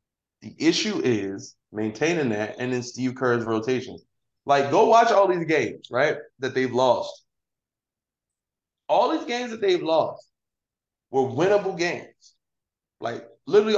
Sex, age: male, 20-39